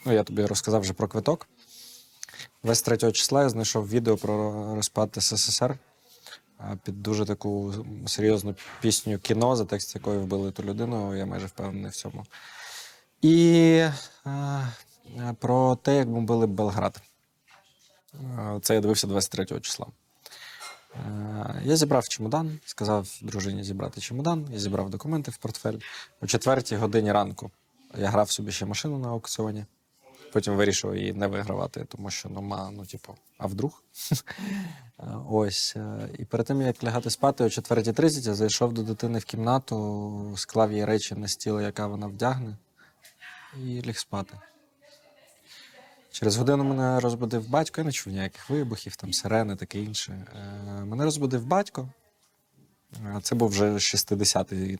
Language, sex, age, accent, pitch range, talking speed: Ukrainian, male, 20-39, native, 100-130 Hz, 140 wpm